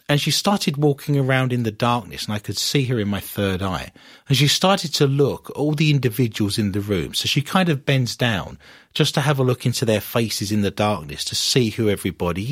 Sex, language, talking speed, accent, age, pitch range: male, English, 235 wpm, British, 40-59, 100-135 Hz